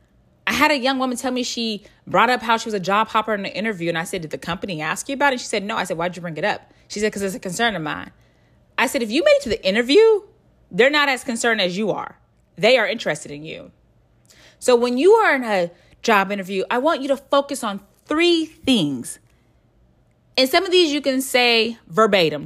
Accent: American